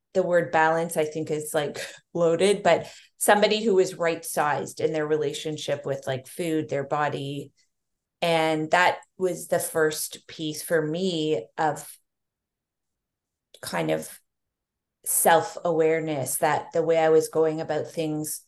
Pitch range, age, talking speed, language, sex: 155-175 Hz, 30-49, 135 wpm, English, female